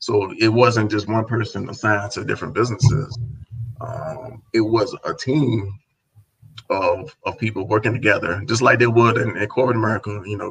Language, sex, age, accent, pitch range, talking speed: English, male, 30-49, American, 105-130 Hz, 170 wpm